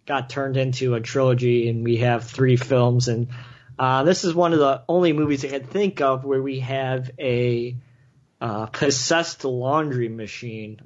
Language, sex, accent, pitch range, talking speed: English, male, American, 125-135 Hz, 170 wpm